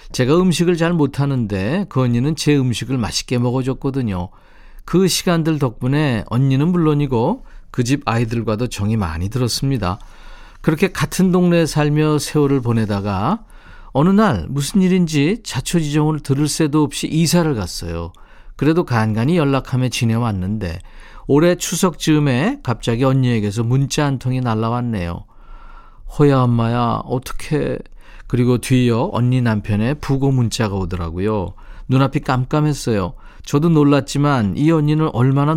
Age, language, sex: 40-59, Korean, male